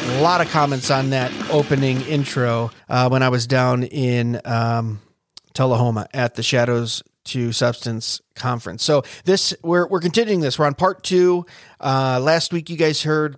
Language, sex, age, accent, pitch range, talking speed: English, male, 30-49, American, 125-145 Hz, 170 wpm